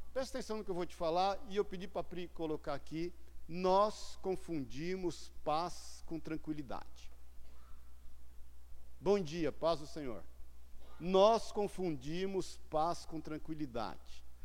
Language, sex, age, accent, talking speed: Portuguese, male, 60-79, Brazilian, 130 wpm